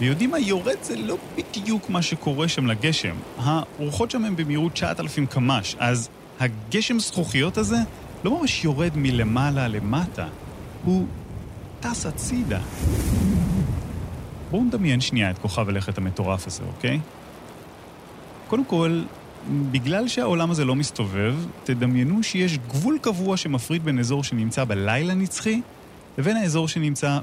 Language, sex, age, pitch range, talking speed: Hebrew, male, 30-49, 110-175 Hz, 125 wpm